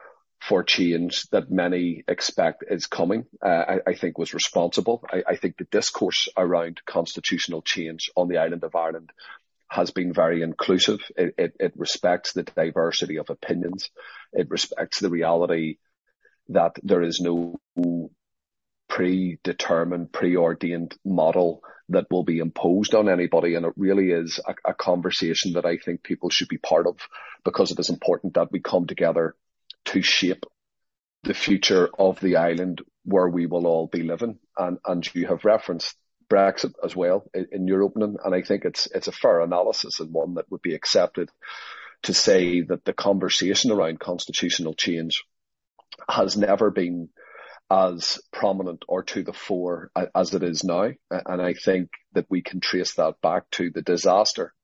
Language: English